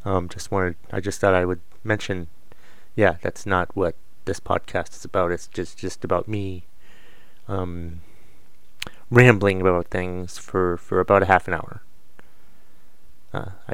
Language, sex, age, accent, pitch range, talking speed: English, male, 30-49, American, 90-115 Hz, 150 wpm